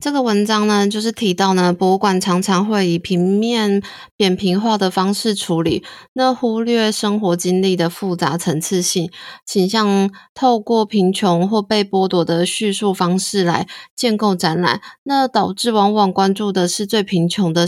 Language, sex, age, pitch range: Chinese, female, 20-39, 180-220 Hz